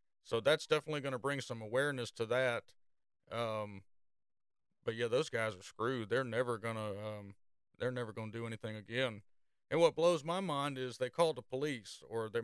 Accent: American